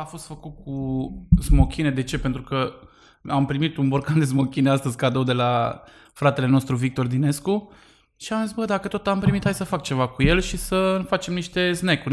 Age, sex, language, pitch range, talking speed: 20-39, male, Romanian, 135-180 Hz, 210 wpm